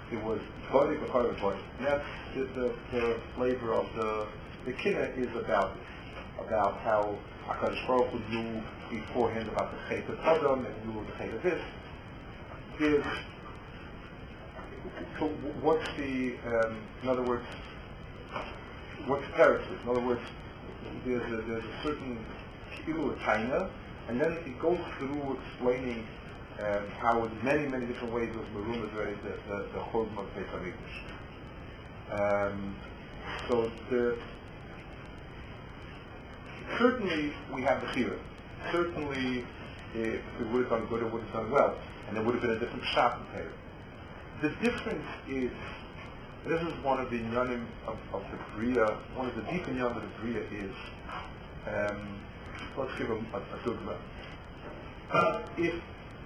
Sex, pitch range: male, 110-130 Hz